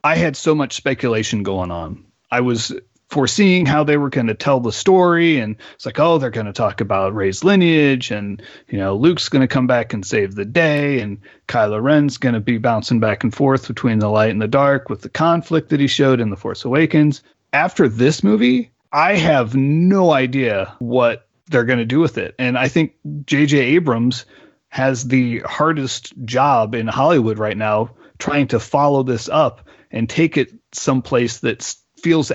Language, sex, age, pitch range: English, male, 30-49, 115-150 Hz